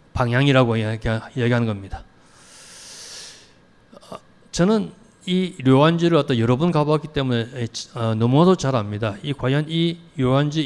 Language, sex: Korean, male